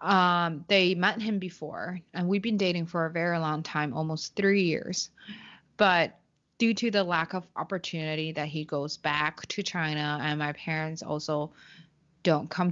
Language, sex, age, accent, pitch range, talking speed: English, female, 20-39, American, 155-185 Hz, 170 wpm